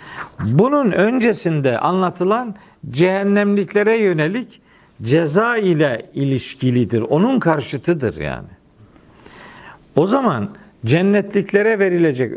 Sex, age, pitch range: male, 50-69, 130-190 Hz